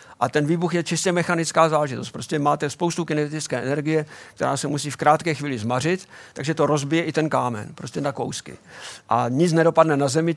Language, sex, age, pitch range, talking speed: Czech, male, 50-69, 140-165 Hz, 190 wpm